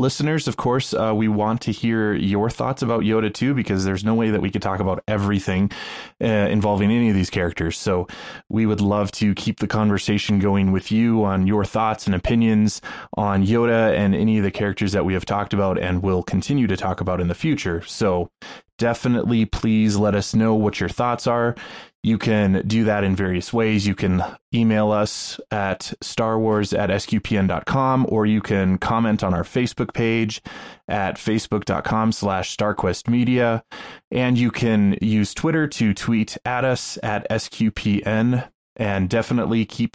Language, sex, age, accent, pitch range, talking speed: English, male, 20-39, American, 100-120 Hz, 175 wpm